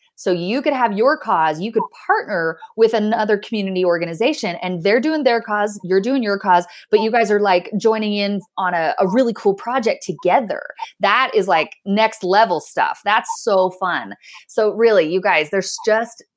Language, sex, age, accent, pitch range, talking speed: English, female, 20-39, American, 190-245 Hz, 185 wpm